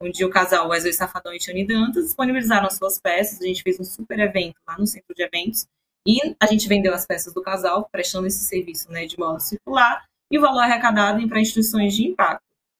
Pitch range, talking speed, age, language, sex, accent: 180-215 Hz, 220 wpm, 20-39, English, female, Brazilian